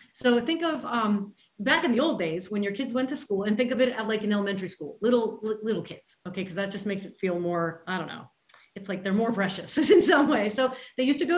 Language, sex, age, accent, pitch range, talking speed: English, female, 30-49, American, 200-255 Hz, 270 wpm